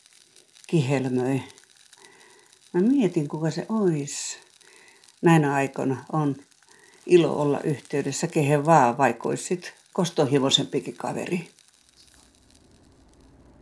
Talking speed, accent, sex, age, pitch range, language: 85 wpm, native, female, 60-79, 130-185 Hz, Finnish